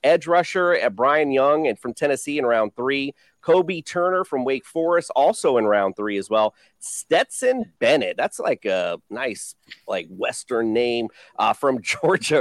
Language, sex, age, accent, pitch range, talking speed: English, male, 40-59, American, 130-210 Hz, 165 wpm